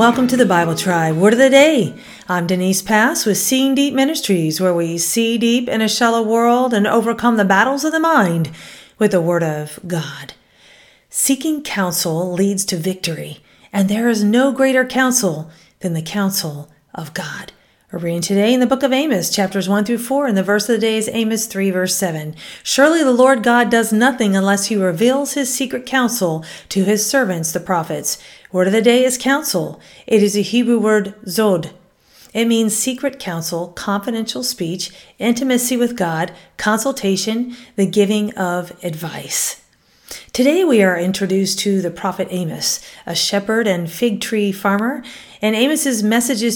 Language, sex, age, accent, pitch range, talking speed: English, female, 40-59, American, 185-255 Hz, 175 wpm